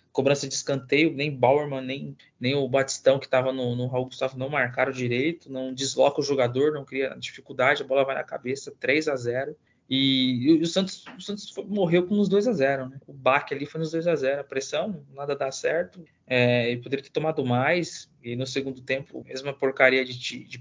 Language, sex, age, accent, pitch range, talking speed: Portuguese, male, 20-39, Brazilian, 130-155 Hz, 205 wpm